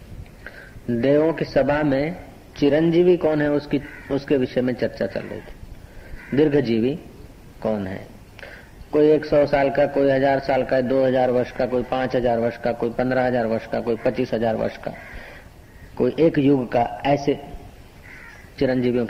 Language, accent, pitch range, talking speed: Hindi, native, 115-160 Hz, 155 wpm